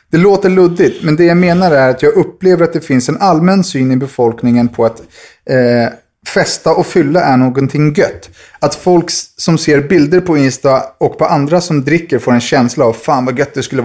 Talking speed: 215 wpm